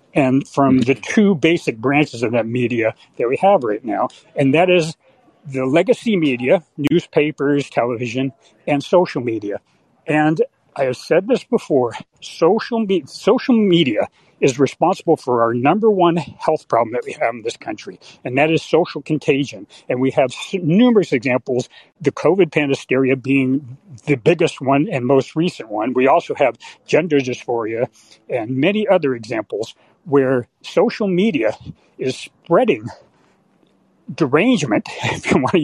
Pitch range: 130-180 Hz